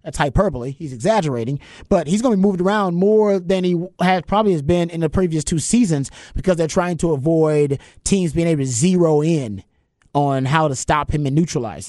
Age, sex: 30-49, male